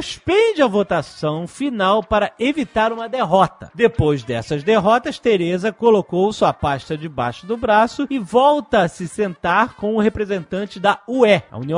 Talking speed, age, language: 150 wpm, 40-59, Portuguese